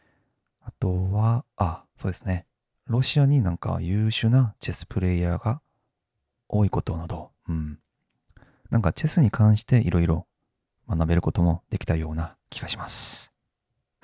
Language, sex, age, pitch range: Japanese, male, 40-59, 90-125 Hz